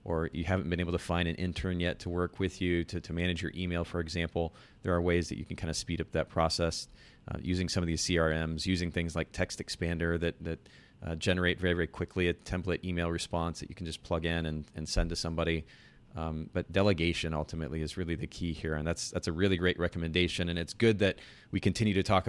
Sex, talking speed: male, 240 wpm